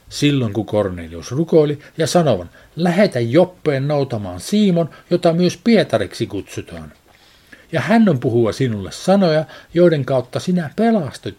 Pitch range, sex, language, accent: 120-170 Hz, male, Finnish, native